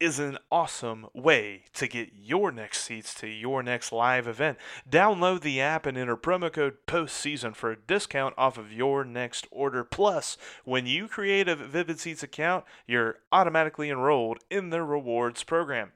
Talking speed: 170 wpm